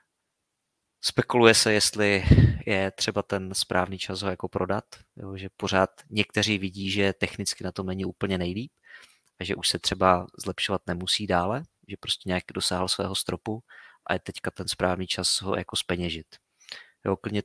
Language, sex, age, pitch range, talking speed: Czech, male, 20-39, 95-105 Hz, 160 wpm